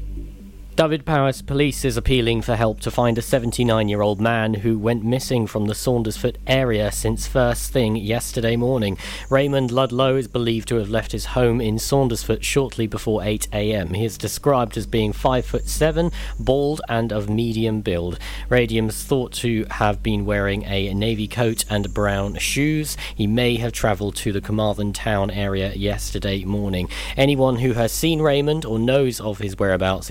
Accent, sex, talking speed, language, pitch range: British, male, 165 wpm, English, 105-130 Hz